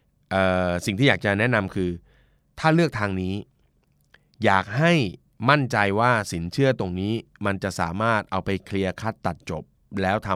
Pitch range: 90-110 Hz